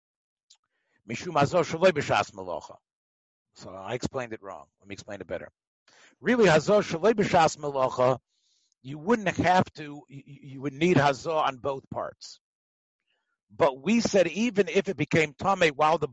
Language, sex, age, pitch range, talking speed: English, male, 50-69, 135-185 Hz, 120 wpm